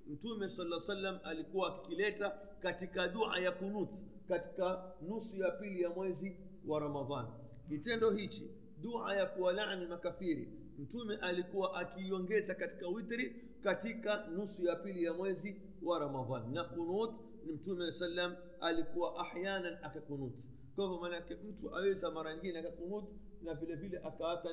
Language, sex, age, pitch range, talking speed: Swahili, male, 50-69, 160-195 Hz, 135 wpm